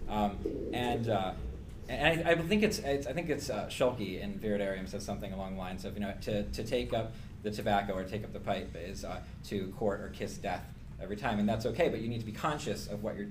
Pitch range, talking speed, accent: 95-120 Hz, 235 wpm, American